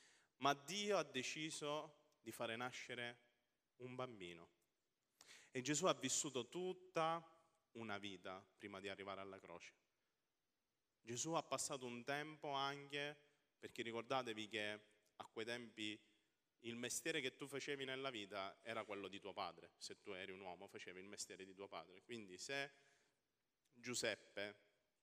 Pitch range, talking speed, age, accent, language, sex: 100-135 Hz, 140 wpm, 30-49, native, Italian, male